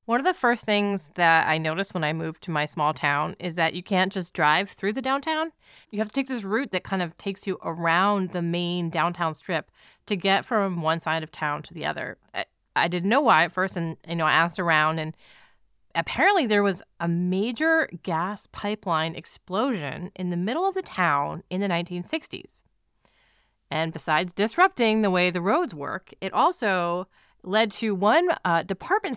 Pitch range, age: 165-210 Hz, 30-49